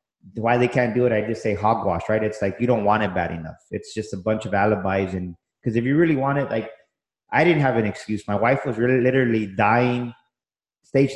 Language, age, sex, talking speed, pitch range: English, 30-49, male, 235 wpm, 100-120 Hz